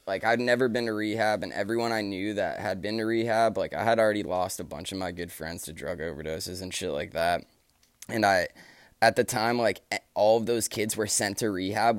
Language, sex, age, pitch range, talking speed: English, male, 20-39, 95-120 Hz, 235 wpm